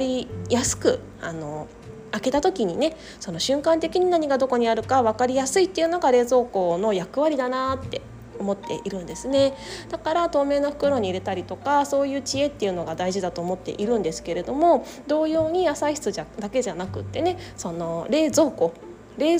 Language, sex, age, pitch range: Japanese, female, 20-39, 185-300 Hz